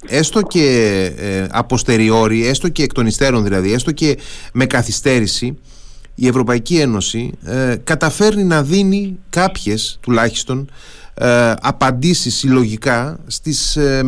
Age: 30-49